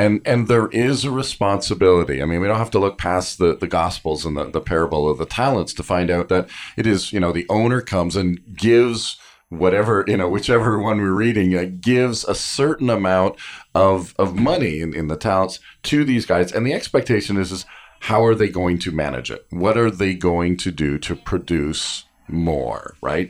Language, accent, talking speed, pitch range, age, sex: English, American, 210 wpm, 85-110 Hz, 40-59, male